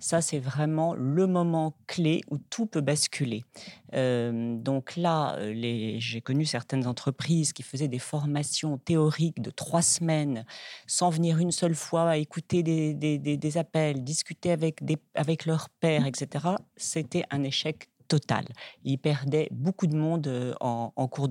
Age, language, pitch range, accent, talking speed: 40-59, French, 135-160 Hz, French, 160 wpm